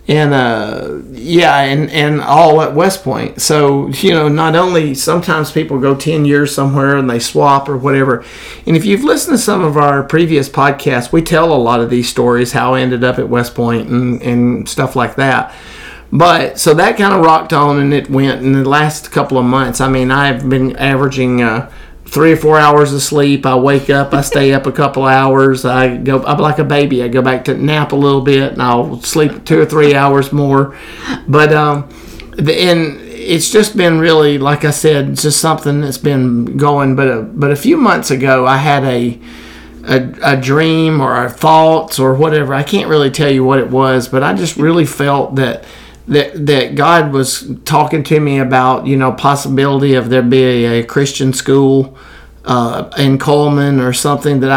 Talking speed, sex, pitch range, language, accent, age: 200 wpm, male, 130-150 Hz, English, American, 40-59